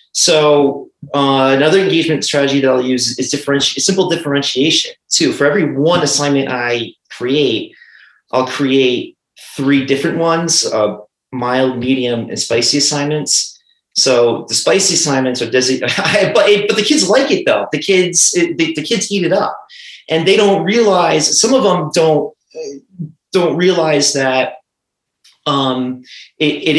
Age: 30-49